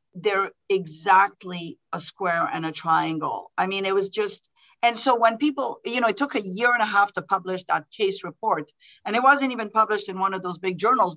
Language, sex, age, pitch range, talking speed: English, female, 50-69, 185-240 Hz, 220 wpm